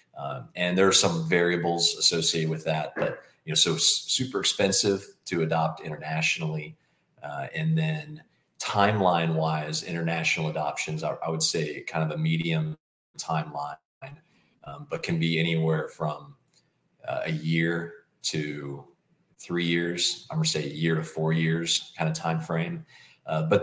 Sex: male